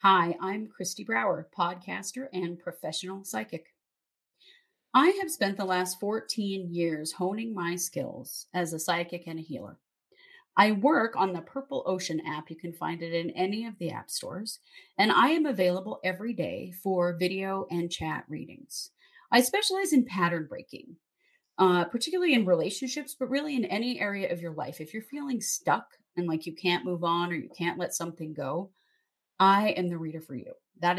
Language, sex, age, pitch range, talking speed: English, female, 30-49, 175-240 Hz, 180 wpm